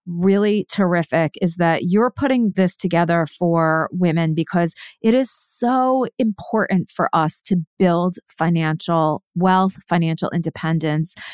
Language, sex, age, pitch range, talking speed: English, female, 30-49, 170-215 Hz, 120 wpm